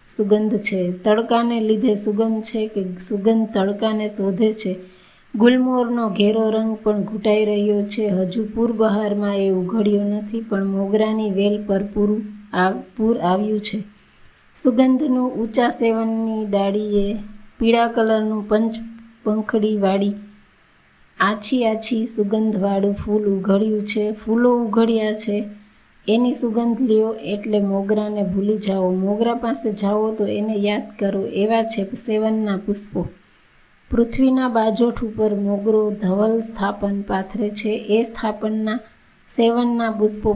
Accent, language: native, Gujarati